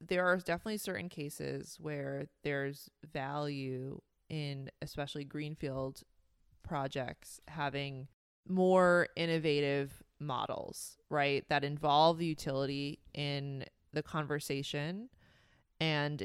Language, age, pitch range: English, 20-39, 140-165 Hz